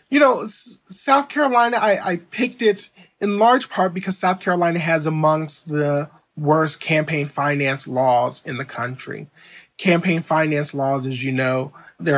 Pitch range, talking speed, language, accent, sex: 135-185 Hz, 155 wpm, English, American, male